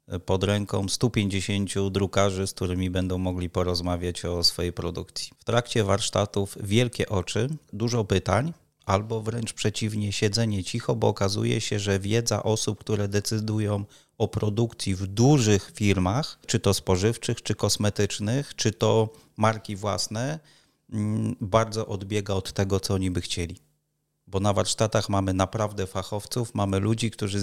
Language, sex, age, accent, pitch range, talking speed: Polish, male, 30-49, native, 95-115 Hz, 140 wpm